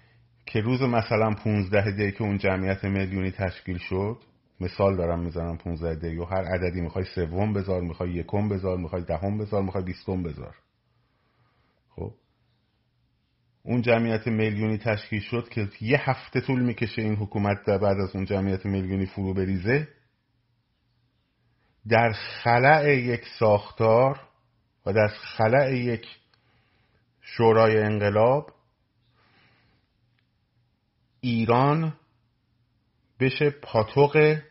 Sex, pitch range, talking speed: male, 95-120 Hz, 110 wpm